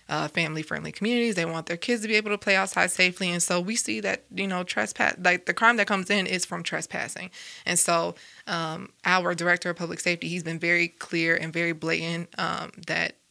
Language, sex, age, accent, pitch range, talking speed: English, female, 20-39, American, 175-200 Hz, 220 wpm